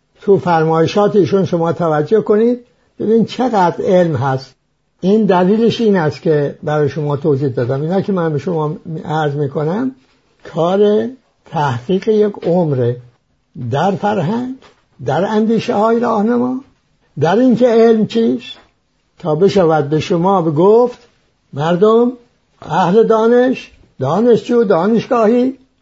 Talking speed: 125 wpm